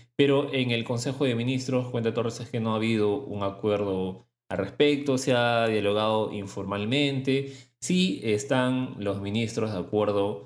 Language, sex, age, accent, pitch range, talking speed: Spanish, male, 20-39, Argentinian, 95-120 Hz, 155 wpm